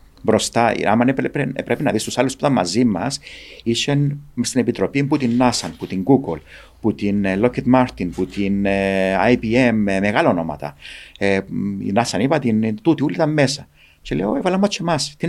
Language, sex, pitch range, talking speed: Greek, male, 85-130 Hz, 175 wpm